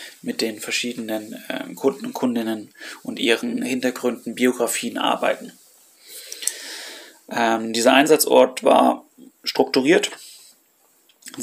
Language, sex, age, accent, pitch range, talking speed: German, male, 30-49, German, 115-155 Hz, 95 wpm